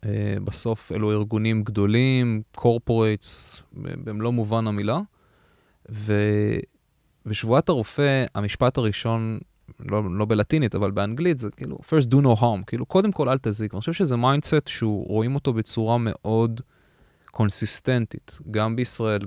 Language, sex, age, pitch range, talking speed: Hebrew, male, 20-39, 105-130 Hz, 125 wpm